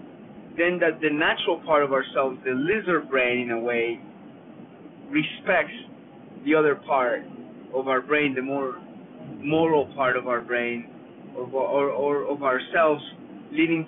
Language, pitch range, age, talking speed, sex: English, 140-185 Hz, 30-49, 145 wpm, male